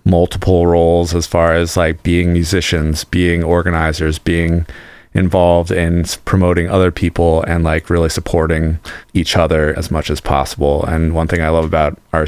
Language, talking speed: English, 160 wpm